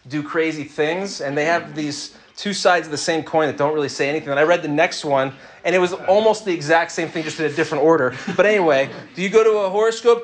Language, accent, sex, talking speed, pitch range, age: English, American, male, 265 wpm, 145-180 Hz, 30-49